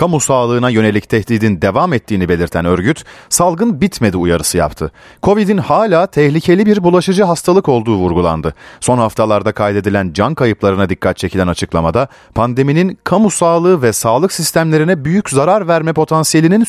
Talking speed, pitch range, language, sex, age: 135 wpm, 100-155 Hz, Turkish, male, 40-59